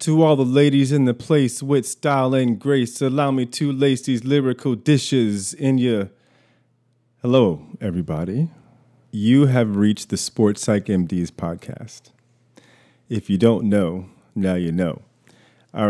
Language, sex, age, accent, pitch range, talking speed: English, male, 30-49, American, 95-125 Hz, 145 wpm